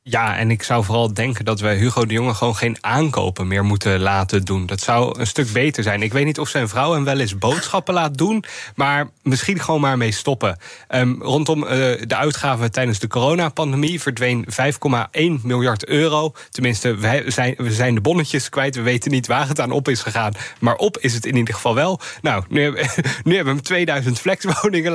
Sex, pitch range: male, 115-145 Hz